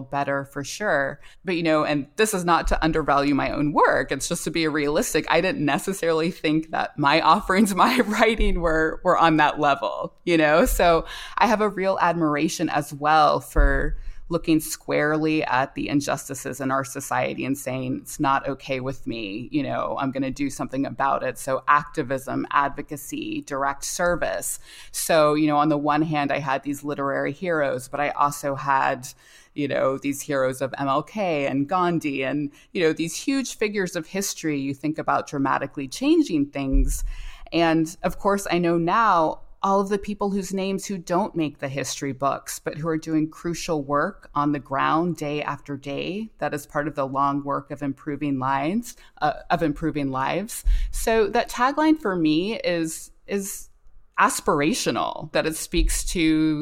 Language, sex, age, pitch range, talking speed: English, female, 20-39, 140-175 Hz, 180 wpm